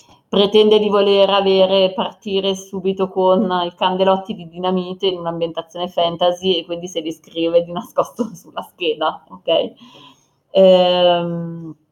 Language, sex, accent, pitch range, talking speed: Italian, female, native, 165-205 Hz, 115 wpm